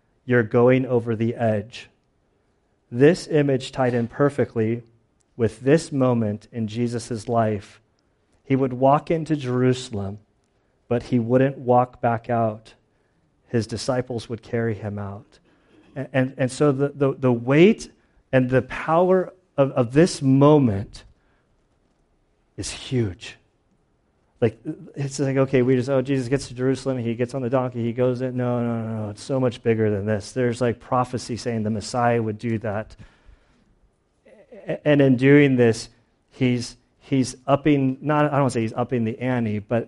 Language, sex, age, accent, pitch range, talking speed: English, male, 40-59, American, 110-130 Hz, 160 wpm